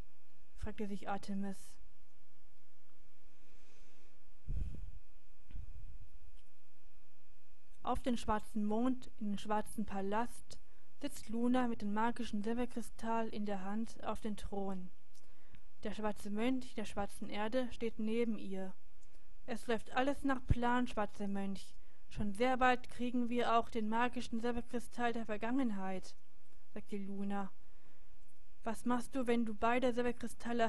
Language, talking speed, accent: German, 115 wpm, German